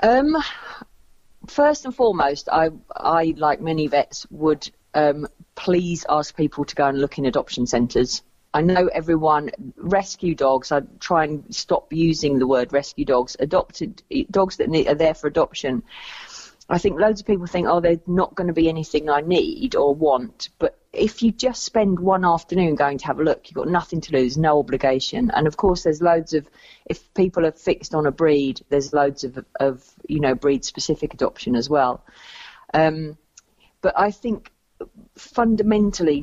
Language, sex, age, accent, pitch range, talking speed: English, female, 40-59, British, 140-180 Hz, 180 wpm